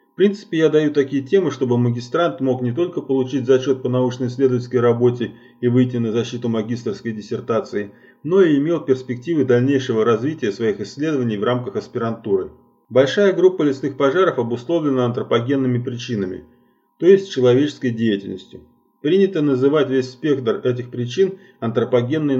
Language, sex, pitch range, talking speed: Russian, male, 120-140 Hz, 135 wpm